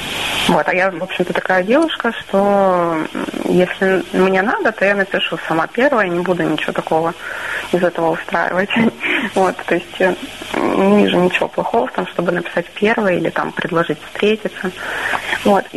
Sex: female